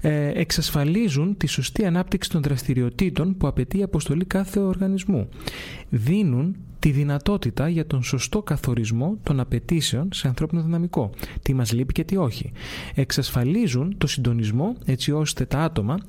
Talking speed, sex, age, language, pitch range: 140 wpm, male, 30-49, Greek, 125-180 Hz